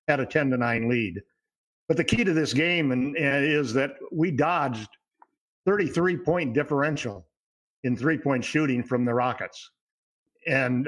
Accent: American